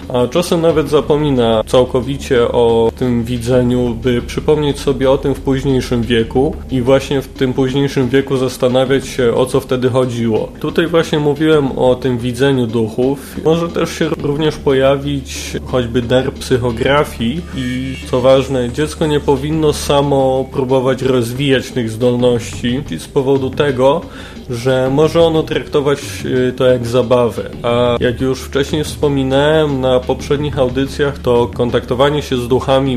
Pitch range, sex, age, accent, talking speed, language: 120-135 Hz, male, 20-39, native, 140 wpm, Polish